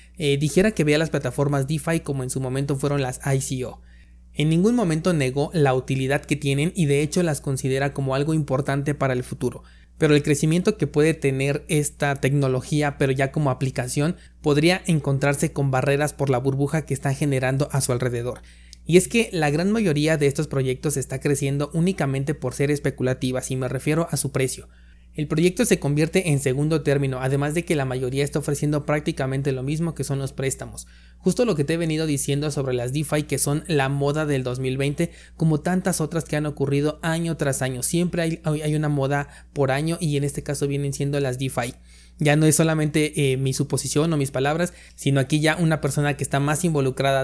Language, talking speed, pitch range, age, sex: Spanish, 200 wpm, 135-155 Hz, 30-49, male